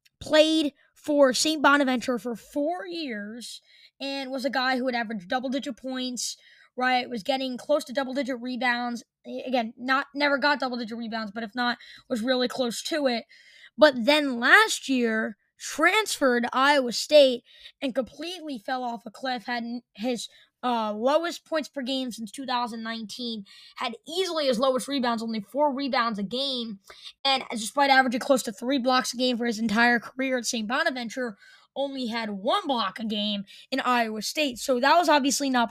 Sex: female